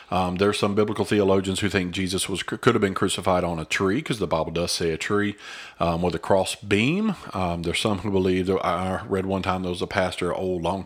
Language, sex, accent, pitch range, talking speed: English, male, American, 90-110 Hz, 240 wpm